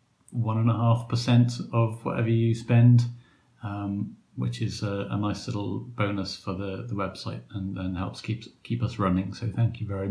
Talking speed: 190 wpm